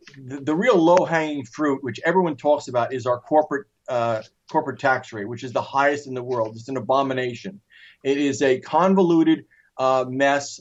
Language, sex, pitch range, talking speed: English, male, 135-175 Hz, 185 wpm